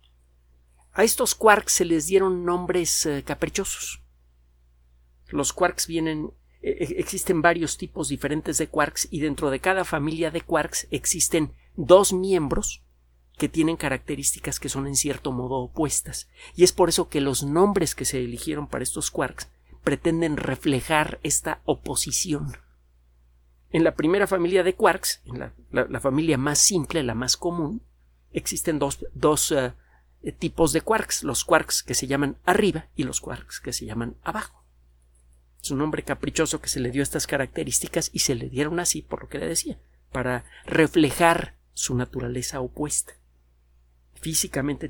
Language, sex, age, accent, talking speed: Spanish, male, 50-69, Mexican, 155 wpm